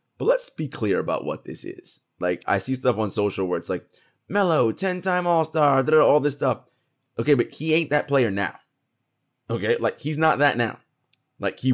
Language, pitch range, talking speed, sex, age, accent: English, 110-150 Hz, 195 wpm, male, 30-49, American